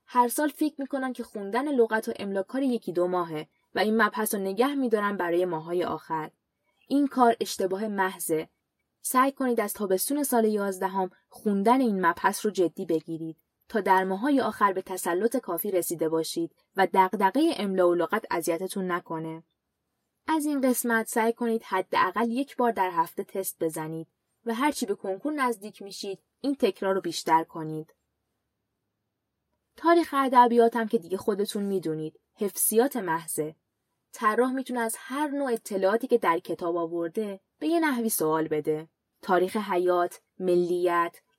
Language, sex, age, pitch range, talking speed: Persian, female, 10-29, 175-240 Hz, 155 wpm